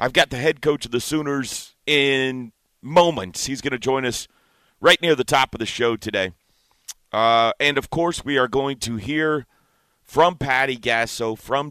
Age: 40-59